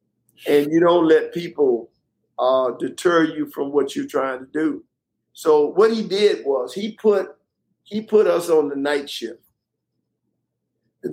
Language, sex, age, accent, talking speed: English, male, 50-69, American, 155 wpm